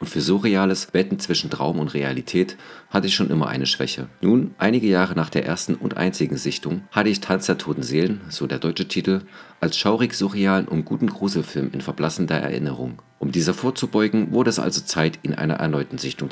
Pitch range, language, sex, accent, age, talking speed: 70-95 Hz, German, male, German, 40-59, 195 wpm